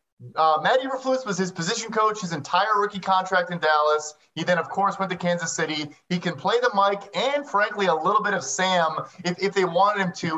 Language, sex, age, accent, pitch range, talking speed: English, male, 30-49, American, 160-190 Hz, 225 wpm